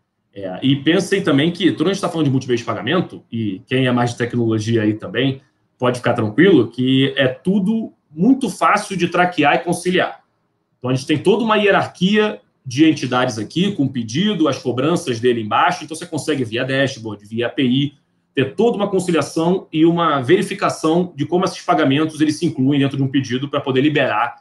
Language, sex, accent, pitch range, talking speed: Portuguese, male, Brazilian, 125-180 Hz, 195 wpm